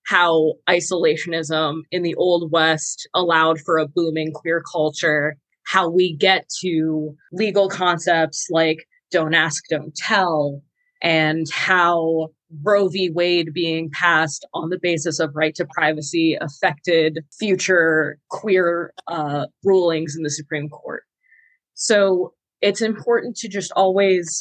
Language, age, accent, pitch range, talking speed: English, 20-39, American, 160-195 Hz, 130 wpm